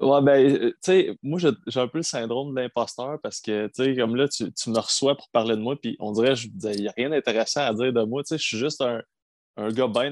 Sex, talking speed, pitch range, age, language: male, 265 wpm, 110-135 Hz, 20-39, French